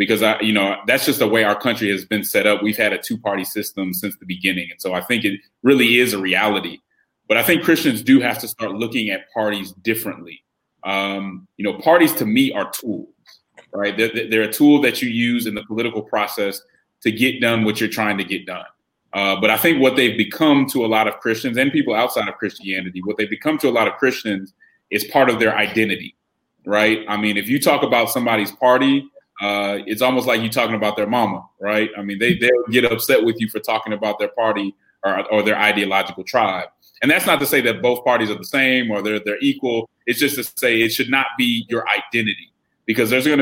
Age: 30-49